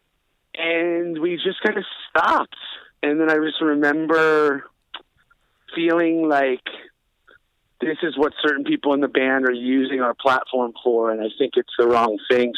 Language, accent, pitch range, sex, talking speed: English, American, 125-175 Hz, male, 160 wpm